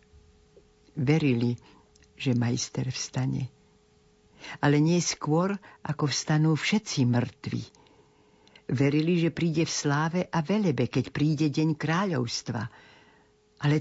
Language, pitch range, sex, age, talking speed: Slovak, 125-155 Hz, female, 60-79, 100 wpm